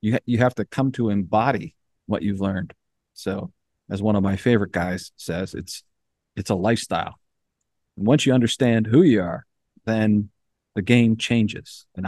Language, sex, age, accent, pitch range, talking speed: English, male, 40-59, American, 100-120 Hz, 170 wpm